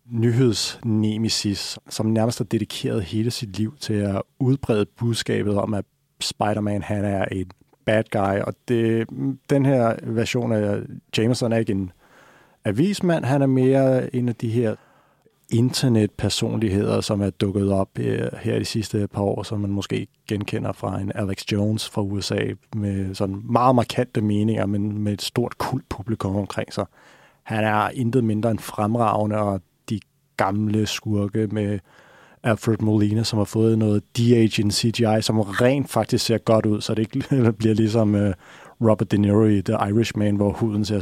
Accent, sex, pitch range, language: native, male, 105-120 Hz, Danish